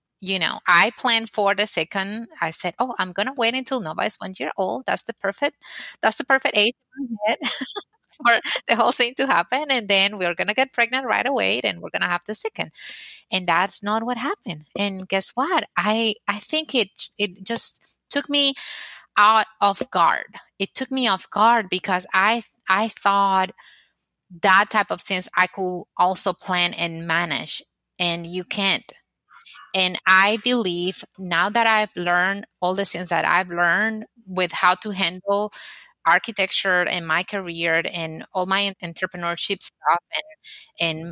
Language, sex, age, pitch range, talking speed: English, female, 20-39, 180-225 Hz, 170 wpm